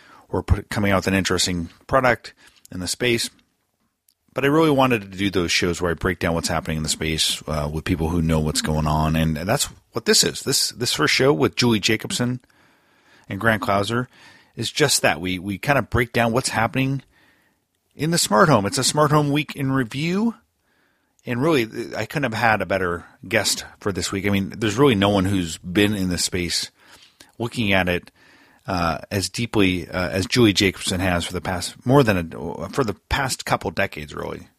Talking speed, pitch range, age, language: 210 wpm, 90-120 Hz, 40-59, English